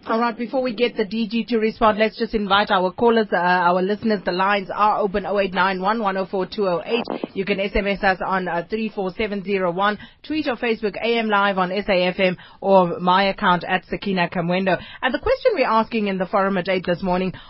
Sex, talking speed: female, 190 wpm